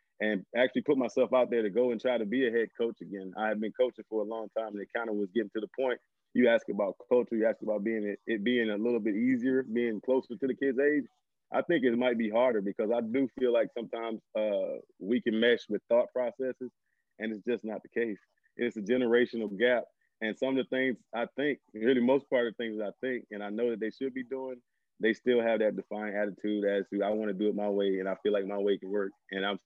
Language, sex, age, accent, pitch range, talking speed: English, male, 20-39, American, 105-120 Hz, 265 wpm